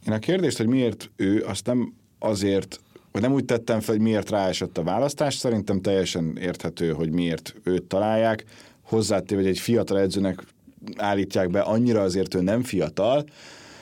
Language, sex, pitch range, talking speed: Hungarian, male, 90-120 Hz, 165 wpm